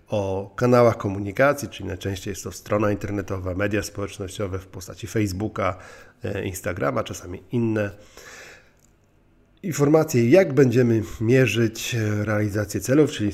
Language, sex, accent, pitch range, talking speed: Polish, male, native, 95-115 Hz, 110 wpm